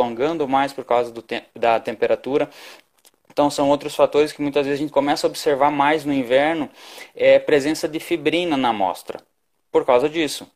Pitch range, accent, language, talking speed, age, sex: 120-155 Hz, Brazilian, Portuguese, 180 wpm, 20-39, male